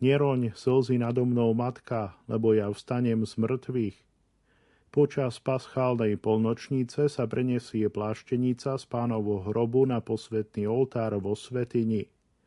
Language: Slovak